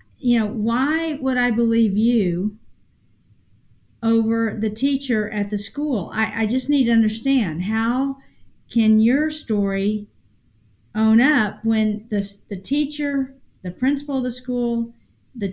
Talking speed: 135 wpm